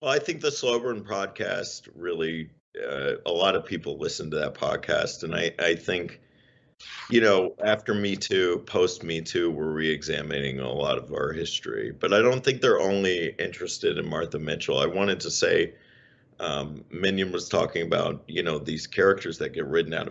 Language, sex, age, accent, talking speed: English, male, 50-69, American, 185 wpm